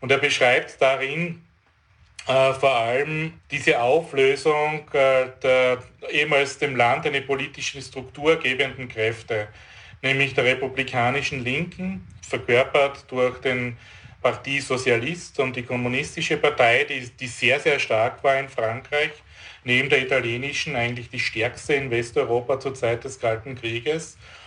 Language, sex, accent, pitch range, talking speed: German, male, Austrian, 125-145 Hz, 130 wpm